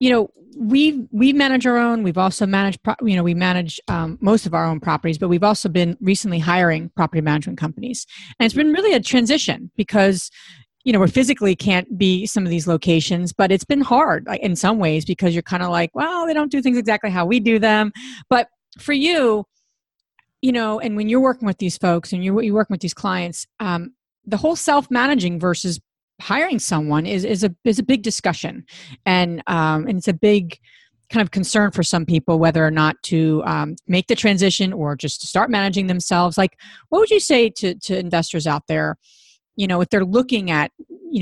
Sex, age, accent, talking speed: female, 40-59, American, 210 wpm